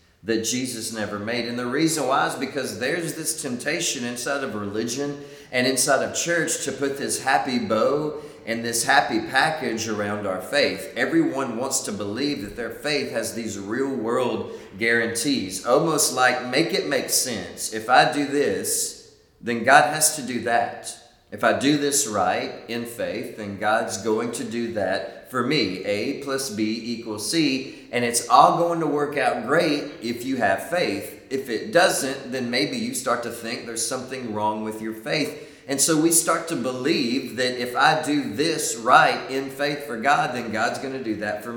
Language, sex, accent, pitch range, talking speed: English, male, American, 115-145 Hz, 190 wpm